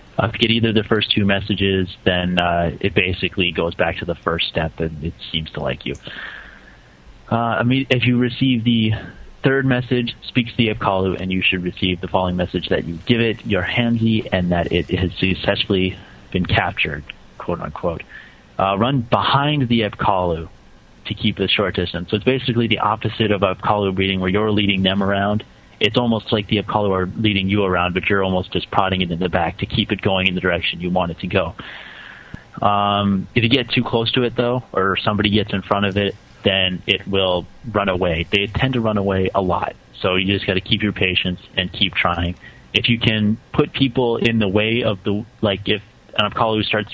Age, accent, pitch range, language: 30-49, American, 95-110 Hz, English